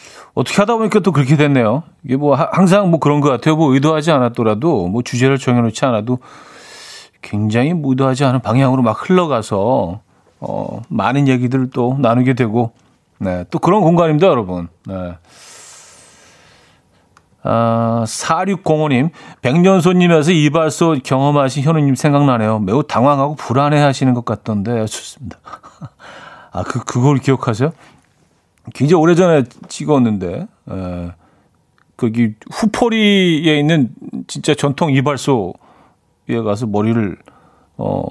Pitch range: 115-155 Hz